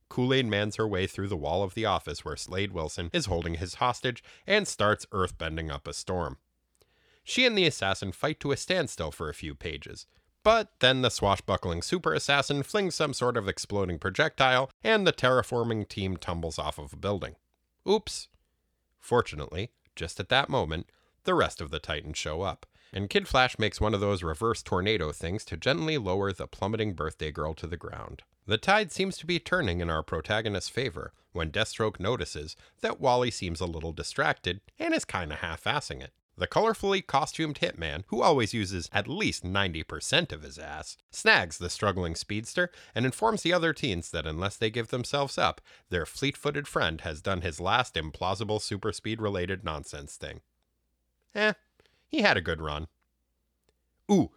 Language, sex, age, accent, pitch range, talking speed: English, male, 30-49, American, 85-125 Hz, 175 wpm